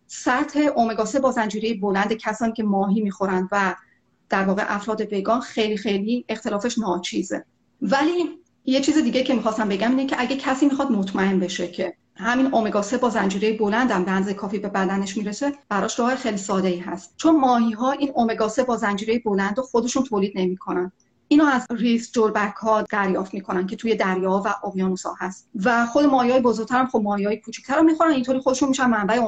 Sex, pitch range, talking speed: female, 205-260 Hz, 190 wpm